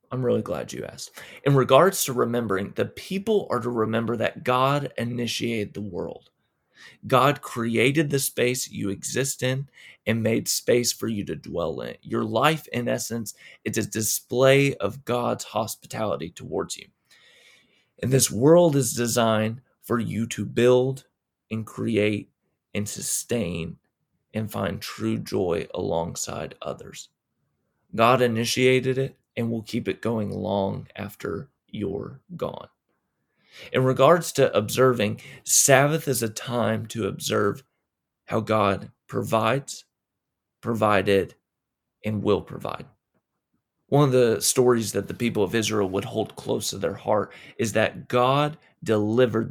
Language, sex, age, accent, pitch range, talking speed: English, male, 30-49, American, 105-130 Hz, 135 wpm